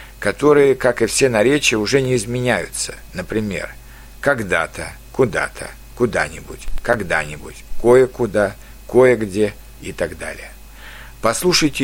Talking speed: 95 wpm